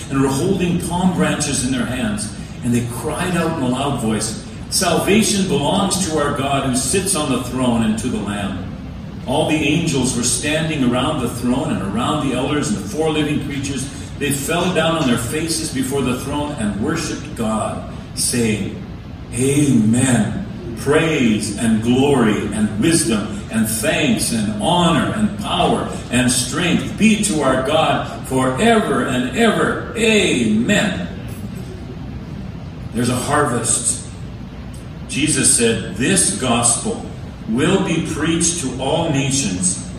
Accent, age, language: American, 40-59, English